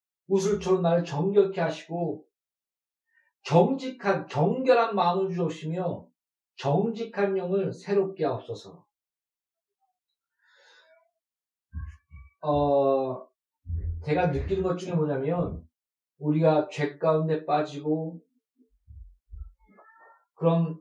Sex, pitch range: male, 145-195 Hz